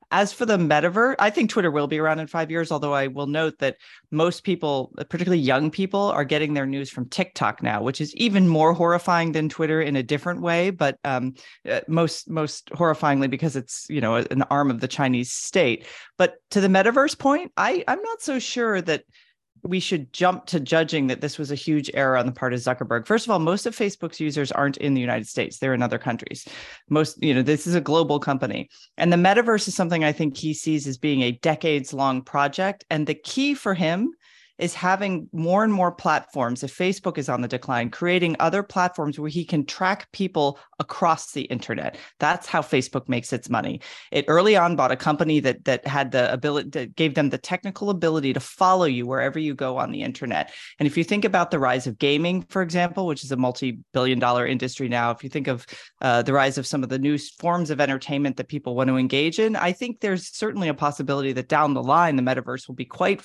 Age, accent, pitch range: 30-49, American, 135-180 Hz